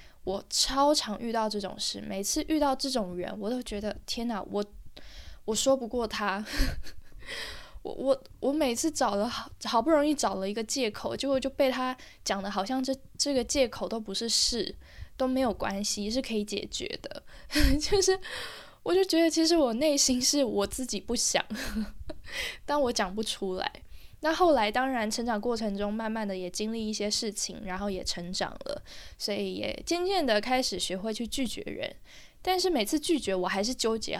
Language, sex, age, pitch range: Chinese, female, 10-29, 205-270 Hz